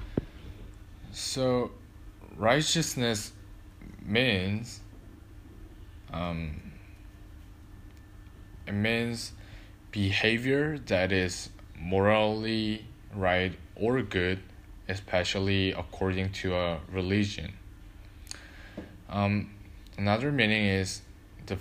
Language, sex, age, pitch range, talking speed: English, male, 20-39, 95-100 Hz, 65 wpm